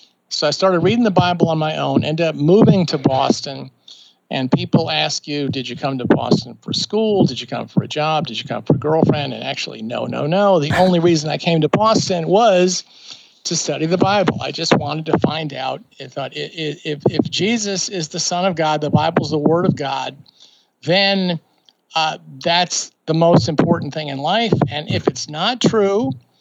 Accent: American